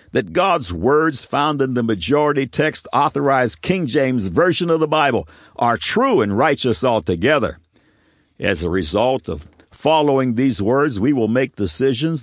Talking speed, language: 150 wpm, English